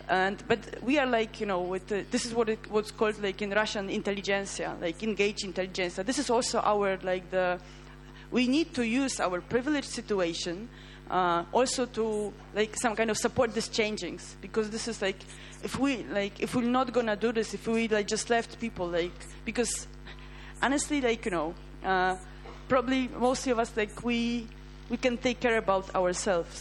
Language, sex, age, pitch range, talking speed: French, female, 20-39, 190-230 Hz, 185 wpm